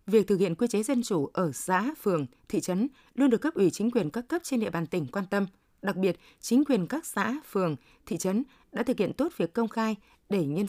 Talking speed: 245 wpm